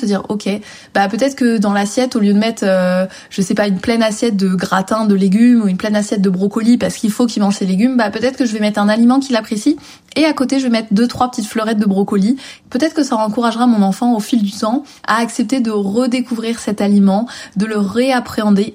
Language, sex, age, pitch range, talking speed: French, female, 20-39, 200-245 Hz, 245 wpm